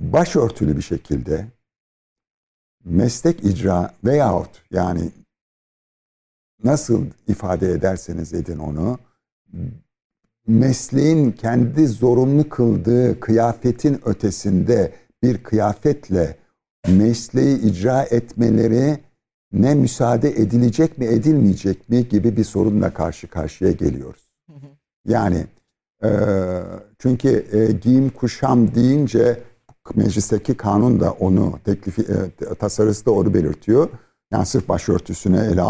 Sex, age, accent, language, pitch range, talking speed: male, 60-79, native, Turkish, 95-120 Hz, 90 wpm